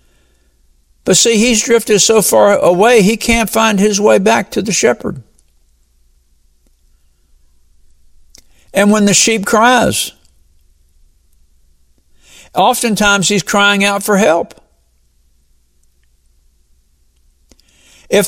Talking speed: 90 wpm